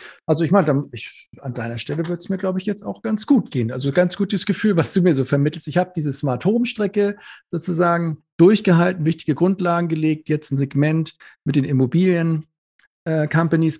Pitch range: 130-160 Hz